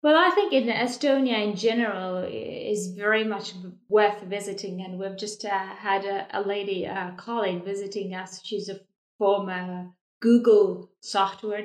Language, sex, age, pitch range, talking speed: English, female, 30-49, 190-230 Hz, 155 wpm